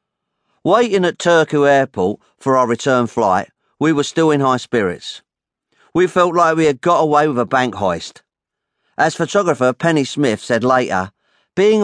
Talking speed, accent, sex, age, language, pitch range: 160 wpm, British, male, 40-59, English, 110-150 Hz